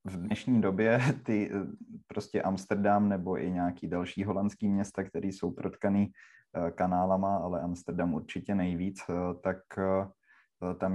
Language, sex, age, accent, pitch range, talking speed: Czech, male, 20-39, native, 90-100 Hz, 120 wpm